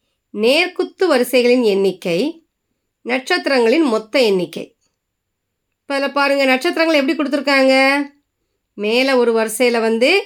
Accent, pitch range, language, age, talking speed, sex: native, 195-295 Hz, Tamil, 20-39, 90 wpm, female